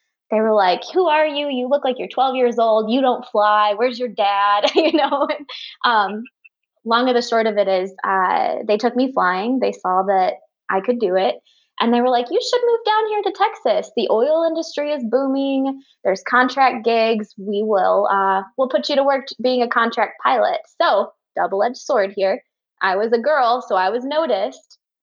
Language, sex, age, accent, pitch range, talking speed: English, female, 20-39, American, 190-250 Hz, 195 wpm